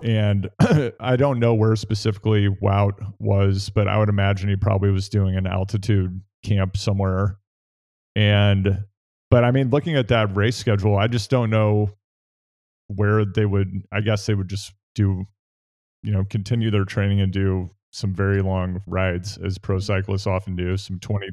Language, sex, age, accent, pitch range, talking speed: English, male, 30-49, American, 100-110 Hz, 170 wpm